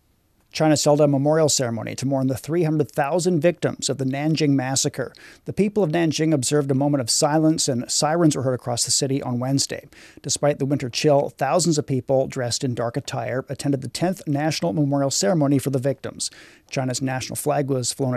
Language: English